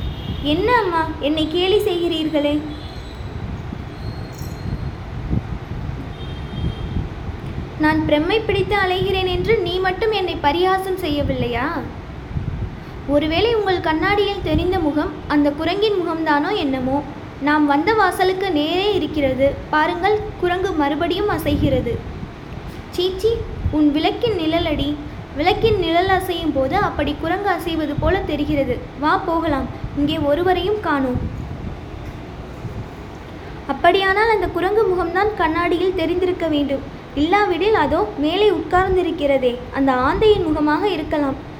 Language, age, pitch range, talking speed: Tamil, 20-39, 300-385 Hz, 90 wpm